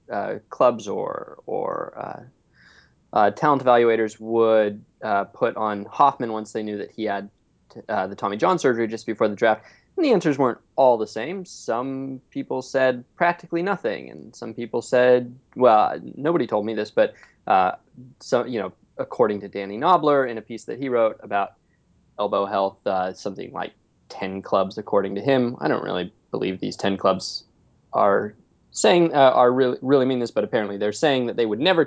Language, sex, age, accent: English, male, 20-39, American